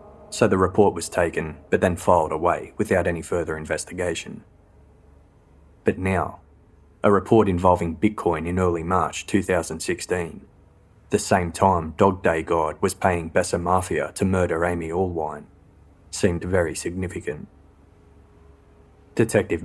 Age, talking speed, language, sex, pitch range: 20-39, 125 wpm, English, male, 80-95 Hz